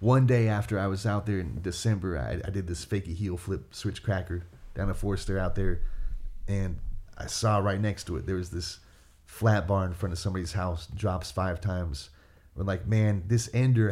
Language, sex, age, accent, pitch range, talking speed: English, male, 30-49, American, 90-110 Hz, 205 wpm